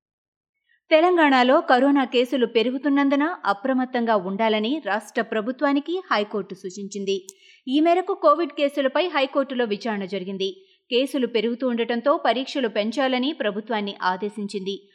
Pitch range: 210-285 Hz